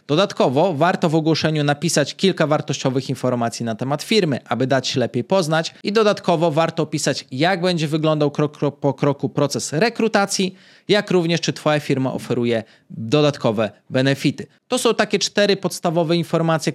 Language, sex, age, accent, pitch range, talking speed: Polish, male, 20-39, native, 145-185 Hz, 150 wpm